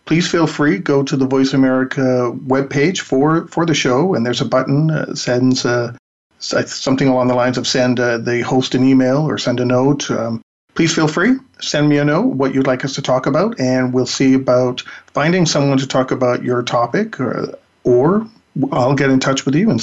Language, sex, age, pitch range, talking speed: English, male, 50-69, 125-145 Hz, 210 wpm